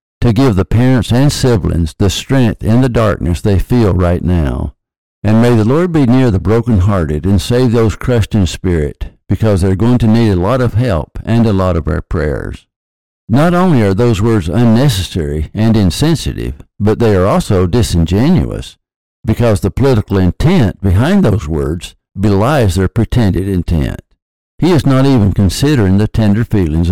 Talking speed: 170 wpm